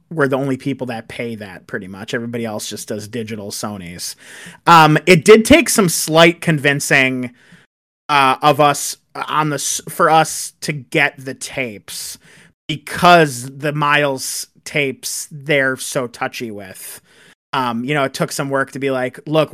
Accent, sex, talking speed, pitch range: American, male, 160 wpm, 125-155 Hz